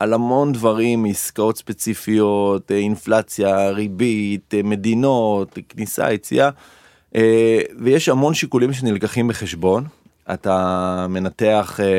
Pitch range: 95-115 Hz